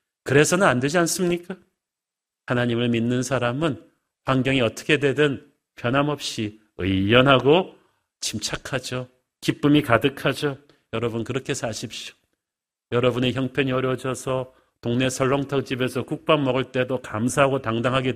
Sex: male